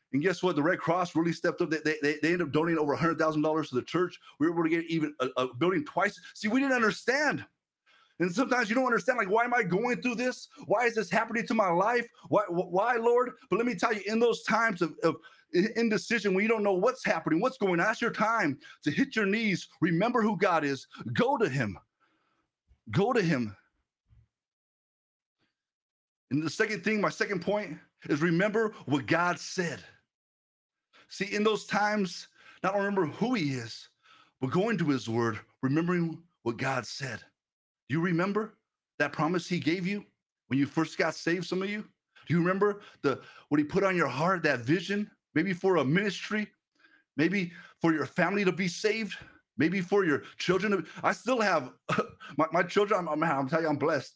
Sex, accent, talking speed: male, American, 200 wpm